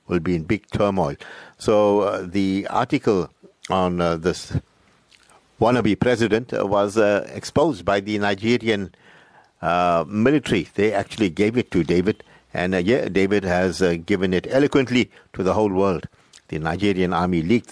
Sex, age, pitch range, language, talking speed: male, 60-79, 90-110 Hz, English, 150 wpm